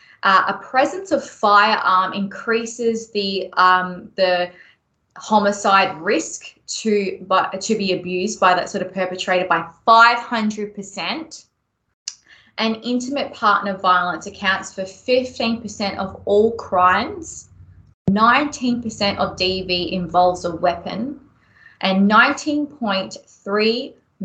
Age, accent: 20-39, Australian